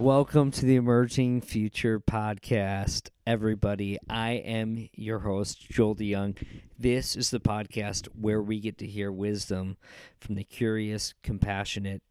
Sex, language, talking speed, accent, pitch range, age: male, English, 135 wpm, American, 95-115 Hz, 40-59